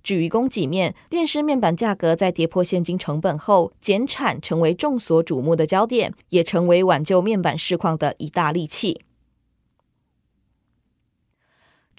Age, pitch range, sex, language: 20-39, 170-240 Hz, female, Chinese